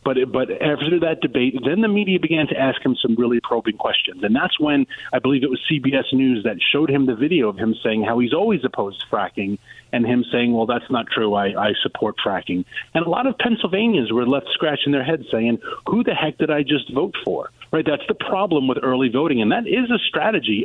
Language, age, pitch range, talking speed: English, 30-49, 120-150 Hz, 235 wpm